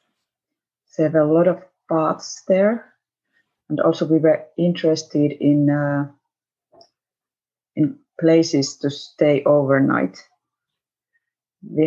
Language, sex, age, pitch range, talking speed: Finnish, female, 30-49, 140-165 Hz, 100 wpm